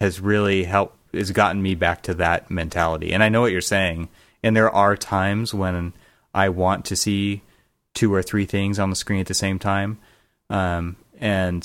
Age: 30-49